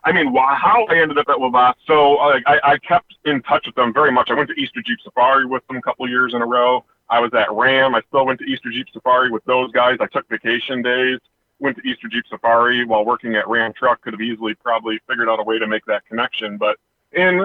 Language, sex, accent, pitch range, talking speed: English, male, American, 125-170 Hz, 255 wpm